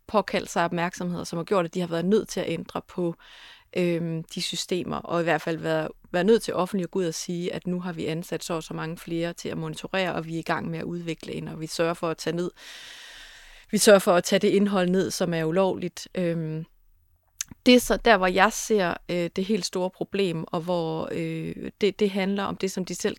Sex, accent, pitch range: female, native, 170-200 Hz